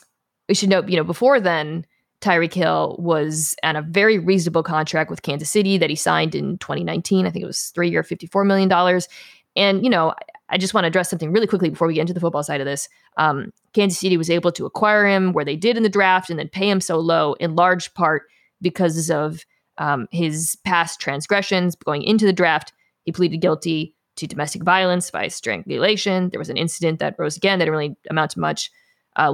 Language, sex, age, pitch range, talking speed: English, female, 20-39, 165-200 Hz, 220 wpm